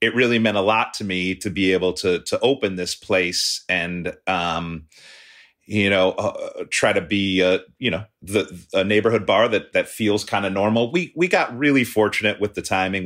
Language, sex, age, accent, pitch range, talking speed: English, male, 30-49, American, 85-105 Hz, 200 wpm